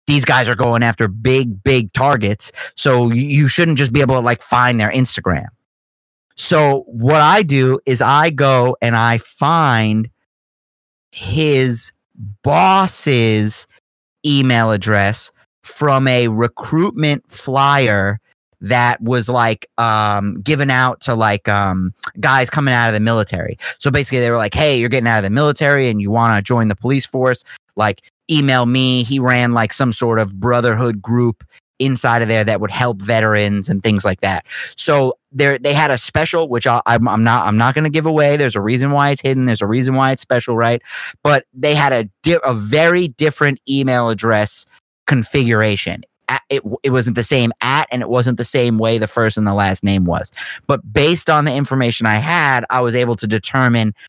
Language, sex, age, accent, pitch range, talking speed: English, male, 30-49, American, 110-135 Hz, 185 wpm